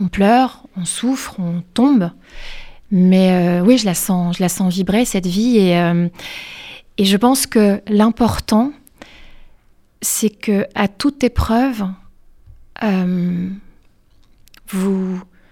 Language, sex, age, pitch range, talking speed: French, female, 30-49, 190-220 Hz, 125 wpm